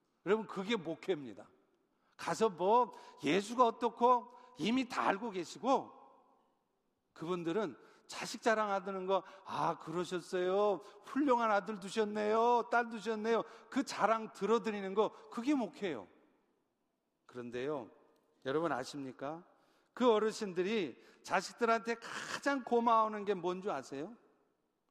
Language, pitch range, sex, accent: Korean, 185-265 Hz, male, native